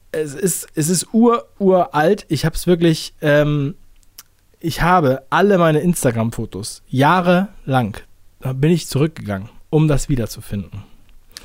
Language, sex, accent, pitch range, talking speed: German, male, German, 120-190 Hz, 125 wpm